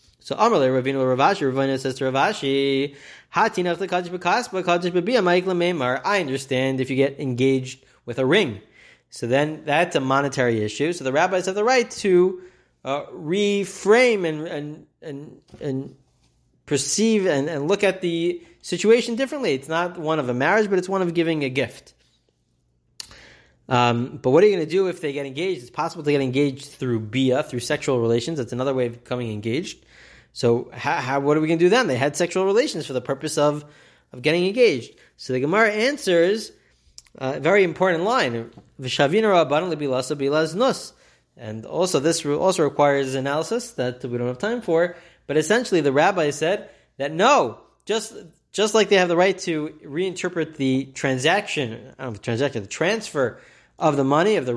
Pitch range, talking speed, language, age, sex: 130-180 Hz, 165 wpm, English, 30-49, male